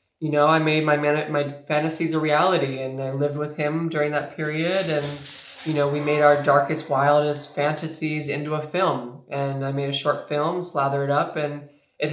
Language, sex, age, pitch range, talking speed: English, male, 20-39, 135-150 Hz, 205 wpm